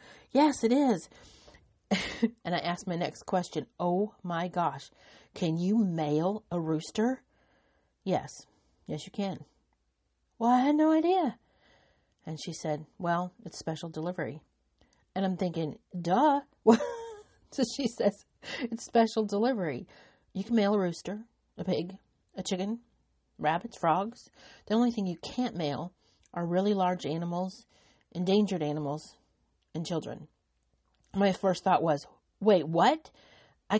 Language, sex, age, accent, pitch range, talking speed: English, female, 40-59, American, 175-235 Hz, 135 wpm